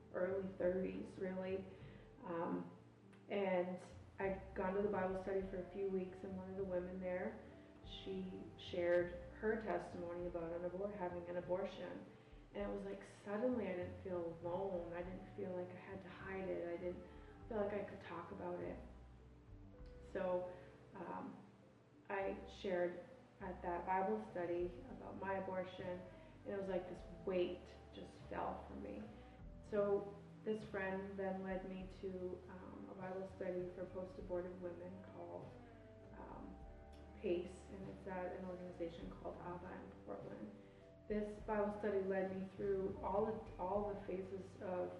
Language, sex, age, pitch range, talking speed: English, female, 30-49, 175-195 Hz, 150 wpm